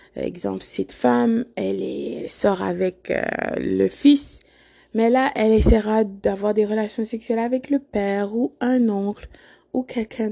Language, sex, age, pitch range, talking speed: French, female, 20-39, 180-230 Hz, 165 wpm